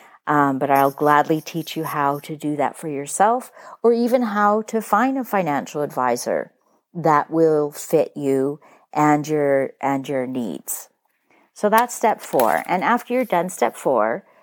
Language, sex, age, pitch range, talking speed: English, female, 50-69, 155-225 Hz, 160 wpm